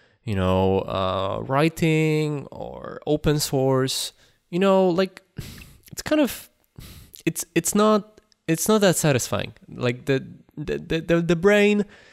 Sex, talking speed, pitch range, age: male, 130 wpm, 105-140 Hz, 20-39